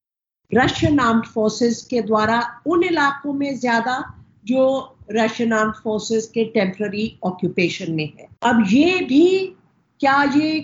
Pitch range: 220-280 Hz